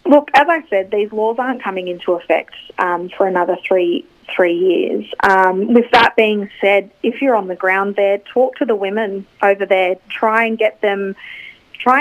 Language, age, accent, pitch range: English, 30-49, Australian, 185-220 Hz